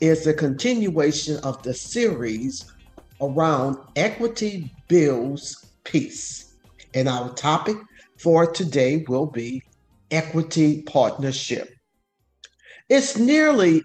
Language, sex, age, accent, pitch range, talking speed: English, male, 50-69, American, 135-225 Hz, 90 wpm